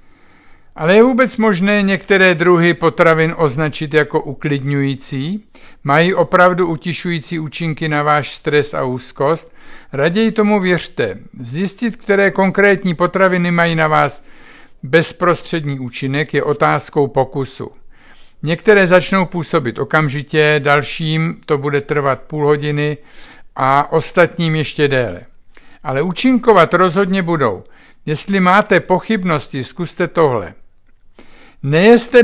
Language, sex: Czech, male